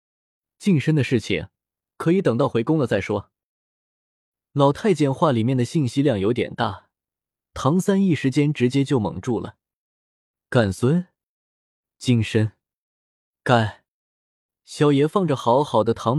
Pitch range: 110-155 Hz